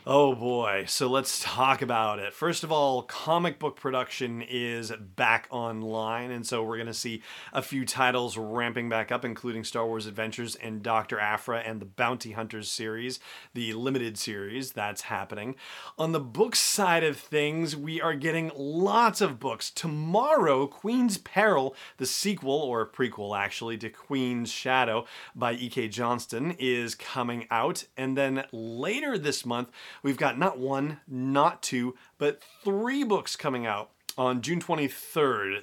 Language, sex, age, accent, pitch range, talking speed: English, male, 30-49, American, 115-150 Hz, 155 wpm